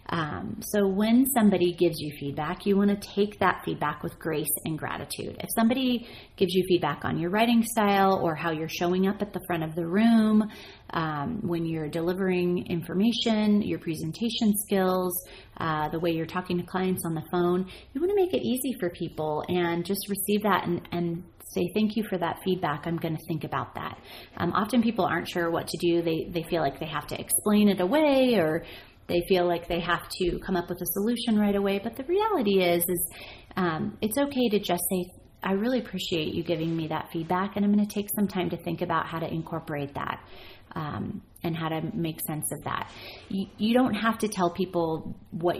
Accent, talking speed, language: American, 210 wpm, English